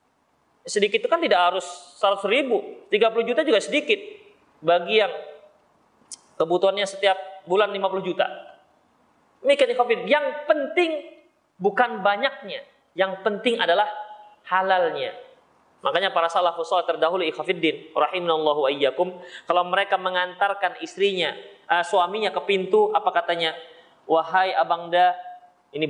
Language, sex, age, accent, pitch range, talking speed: Indonesian, male, 30-49, native, 185-285 Hz, 100 wpm